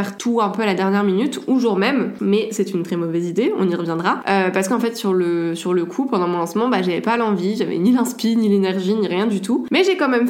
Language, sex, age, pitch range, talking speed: French, female, 20-39, 195-235 Hz, 280 wpm